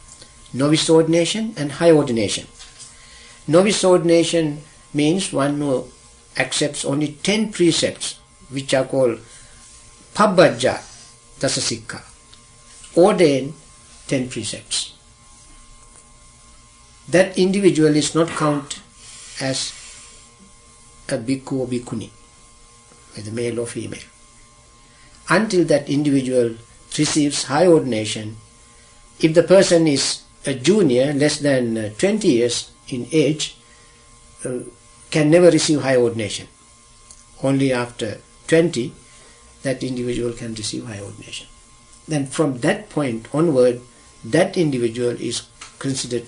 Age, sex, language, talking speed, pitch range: 60-79, male, English, 100 wpm, 120-145 Hz